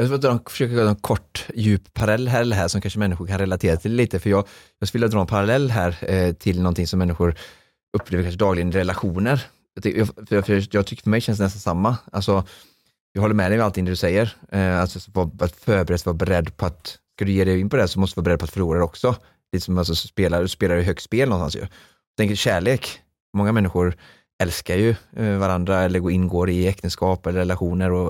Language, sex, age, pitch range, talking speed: Swedish, male, 30-49, 90-105 Hz, 230 wpm